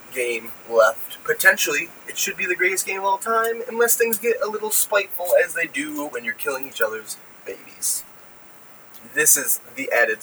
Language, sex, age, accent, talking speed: English, male, 20-39, American, 180 wpm